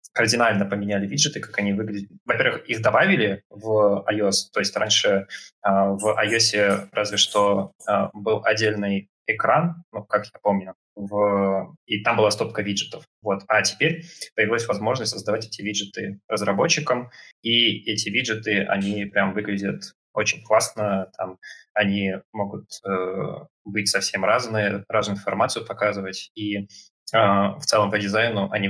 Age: 20-39